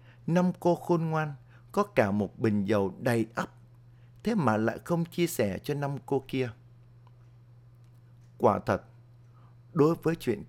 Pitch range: 115-135 Hz